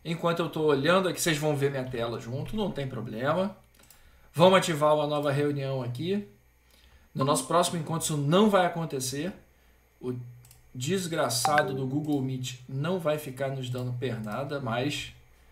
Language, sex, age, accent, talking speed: Portuguese, male, 40-59, Brazilian, 155 wpm